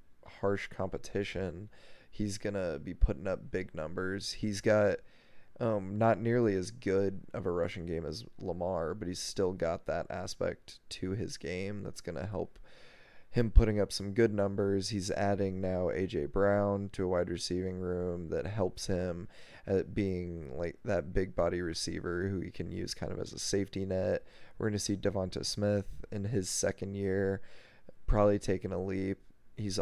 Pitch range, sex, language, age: 90-105 Hz, male, English, 20-39